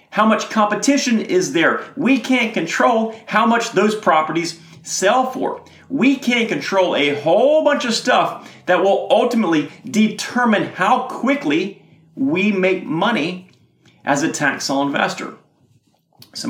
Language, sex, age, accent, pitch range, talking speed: English, male, 40-59, American, 180-245 Hz, 135 wpm